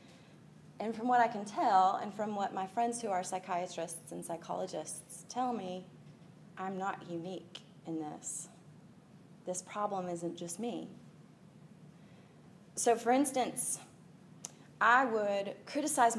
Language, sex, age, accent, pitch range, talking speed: English, female, 30-49, American, 175-230 Hz, 125 wpm